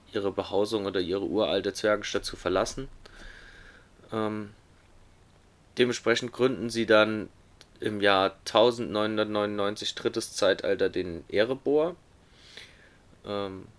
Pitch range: 100-115 Hz